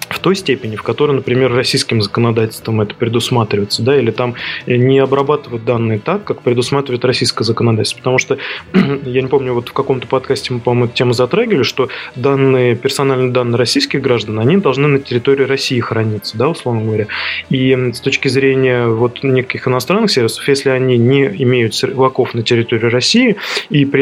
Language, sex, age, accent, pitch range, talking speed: Russian, male, 20-39, native, 115-135 Hz, 170 wpm